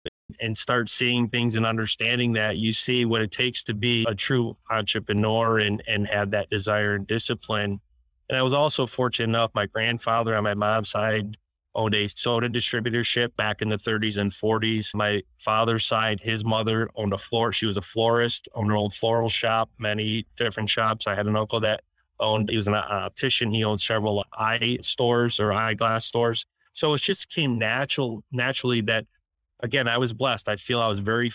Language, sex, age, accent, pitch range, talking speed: English, male, 20-39, American, 105-115 Hz, 190 wpm